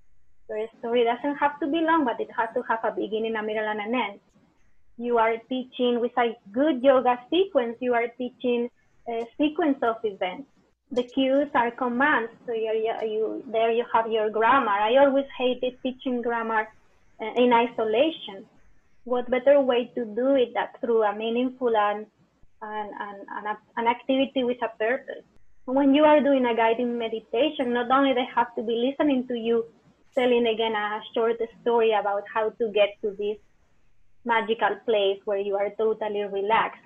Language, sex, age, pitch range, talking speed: English, female, 20-39, 225-260 Hz, 175 wpm